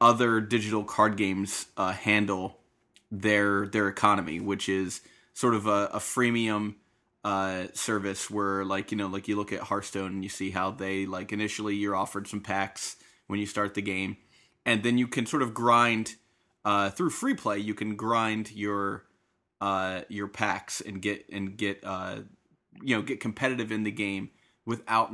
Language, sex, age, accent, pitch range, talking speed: English, male, 20-39, American, 100-120 Hz, 175 wpm